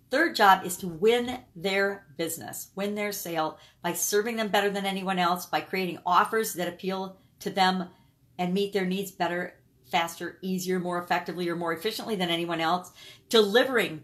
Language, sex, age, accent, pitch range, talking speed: English, female, 50-69, American, 175-220 Hz, 170 wpm